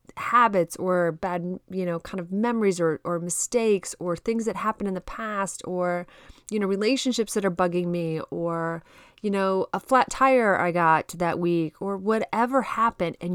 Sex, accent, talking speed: female, American, 180 wpm